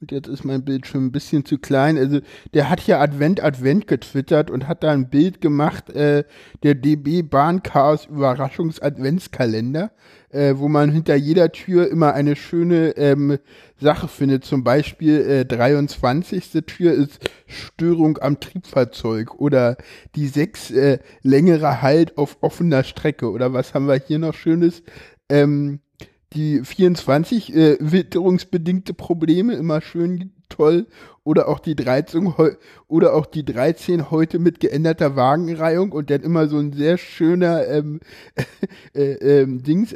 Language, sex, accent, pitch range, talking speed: German, male, German, 140-170 Hz, 150 wpm